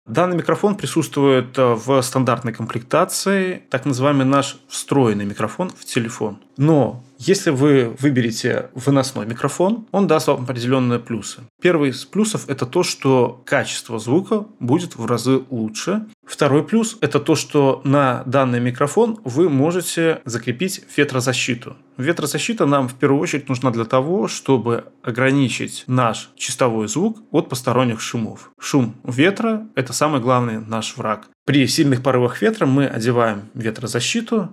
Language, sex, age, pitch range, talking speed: Russian, male, 20-39, 120-155 Hz, 135 wpm